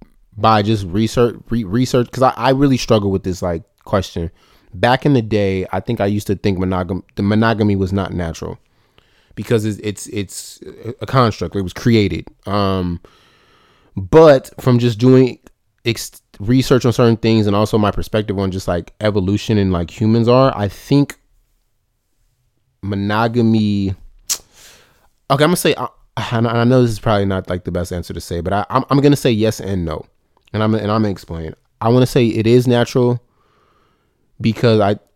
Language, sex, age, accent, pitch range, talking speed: English, male, 20-39, American, 95-115 Hz, 180 wpm